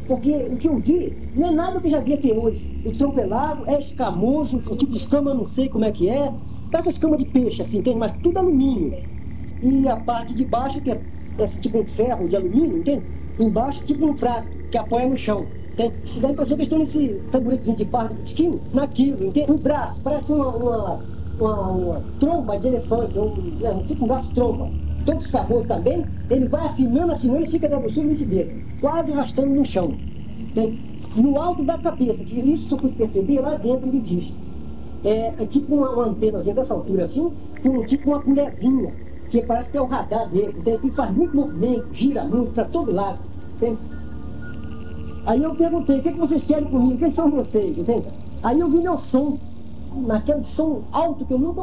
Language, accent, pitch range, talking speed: Portuguese, Brazilian, 230-295 Hz, 215 wpm